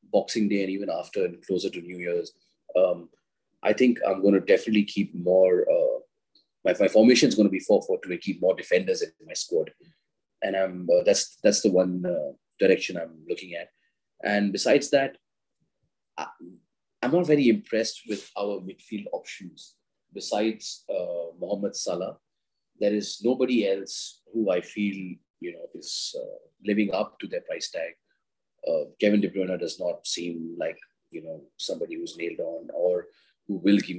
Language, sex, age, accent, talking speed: English, male, 30-49, Indian, 175 wpm